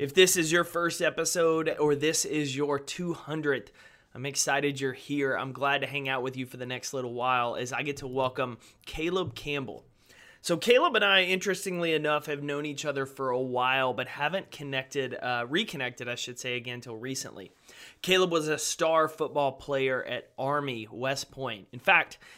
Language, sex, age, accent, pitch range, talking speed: English, male, 20-39, American, 125-150 Hz, 190 wpm